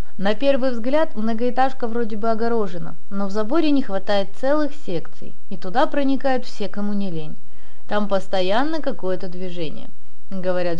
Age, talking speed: 20-39, 145 wpm